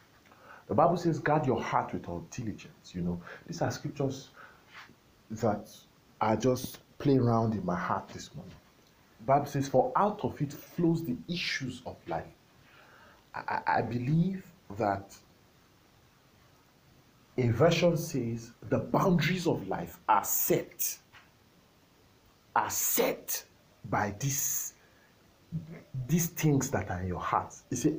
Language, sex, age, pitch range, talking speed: English, male, 50-69, 120-165 Hz, 135 wpm